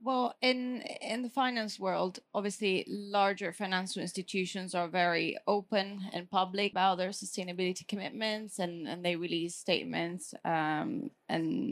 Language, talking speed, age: English, 135 wpm, 20-39